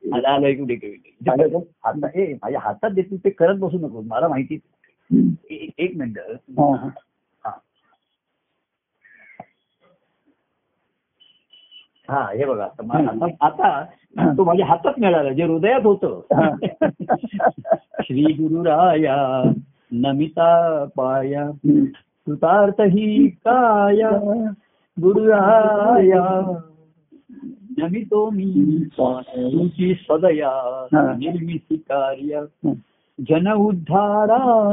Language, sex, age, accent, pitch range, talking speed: Marathi, male, 50-69, native, 150-220 Hz, 50 wpm